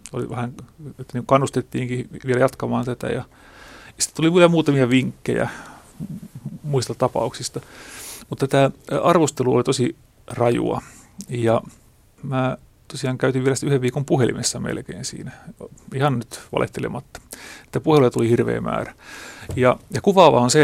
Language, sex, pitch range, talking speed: Finnish, male, 120-140 Hz, 130 wpm